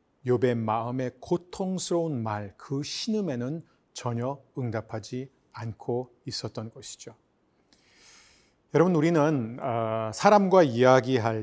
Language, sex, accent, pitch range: Korean, male, native, 120-165 Hz